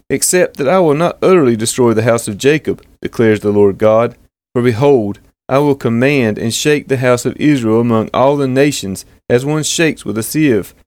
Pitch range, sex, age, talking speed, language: 115-145 Hz, male, 30-49, 200 wpm, English